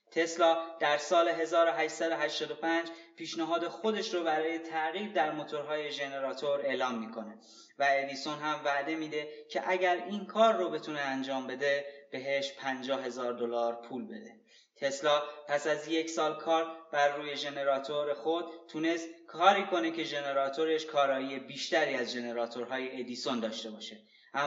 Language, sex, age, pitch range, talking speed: Persian, male, 20-39, 130-165 Hz, 135 wpm